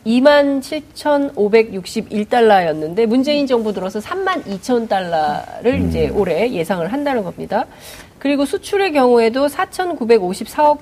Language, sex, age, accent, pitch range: Korean, female, 30-49, native, 205-295 Hz